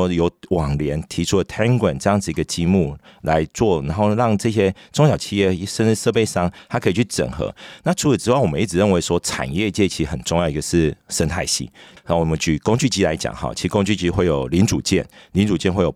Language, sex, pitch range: Chinese, male, 80-100 Hz